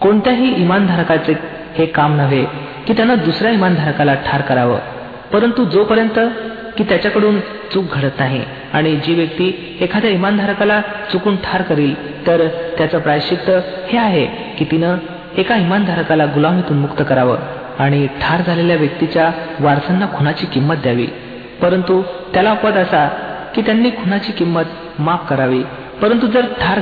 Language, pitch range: Marathi, 150-200 Hz